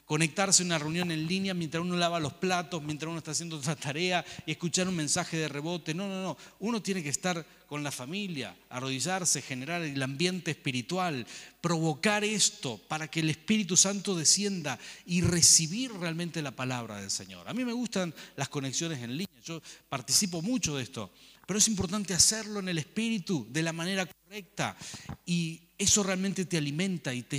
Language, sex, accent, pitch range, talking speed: Spanish, male, Argentinian, 135-180 Hz, 185 wpm